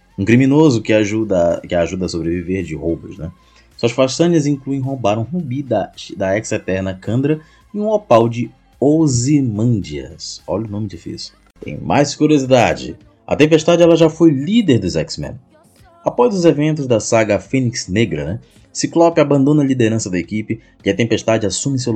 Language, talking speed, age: Portuguese, 165 wpm, 20-39